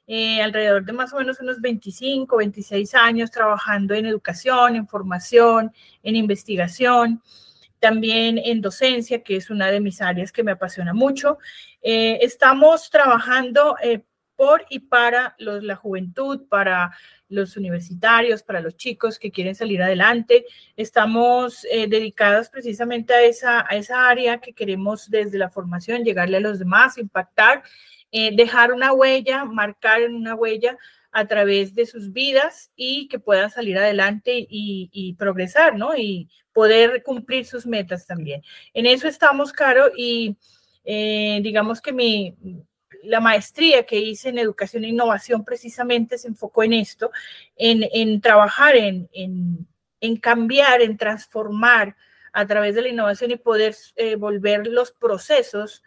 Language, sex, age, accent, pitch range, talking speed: Spanish, female, 30-49, Colombian, 205-245 Hz, 145 wpm